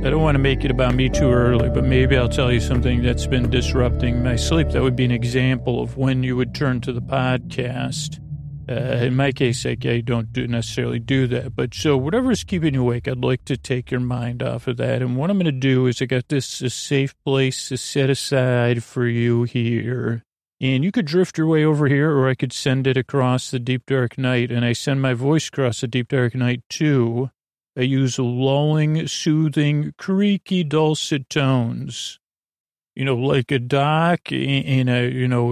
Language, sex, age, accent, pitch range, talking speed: English, male, 40-59, American, 125-145 Hz, 210 wpm